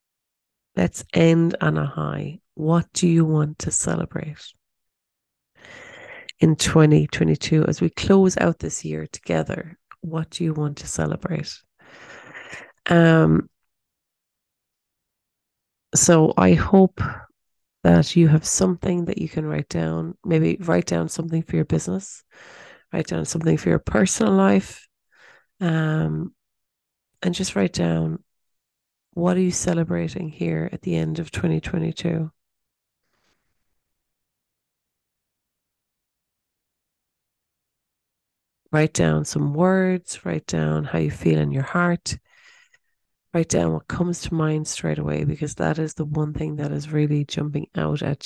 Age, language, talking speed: 30-49, English, 125 wpm